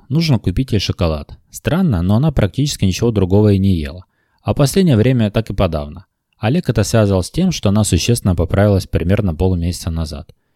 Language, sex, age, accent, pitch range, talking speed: Russian, male, 20-39, native, 90-120 Hz, 180 wpm